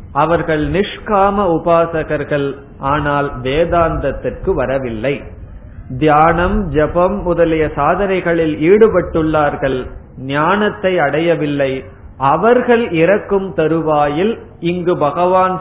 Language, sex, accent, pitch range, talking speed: Tamil, male, native, 140-180 Hz, 70 wpm